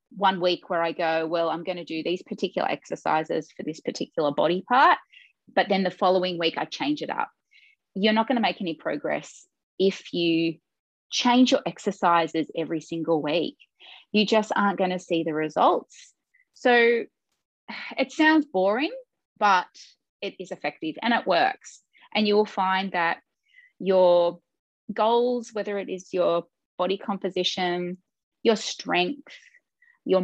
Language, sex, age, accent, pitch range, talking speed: English, female, 20-39, Australian, 180-260 Hz, 155 wpm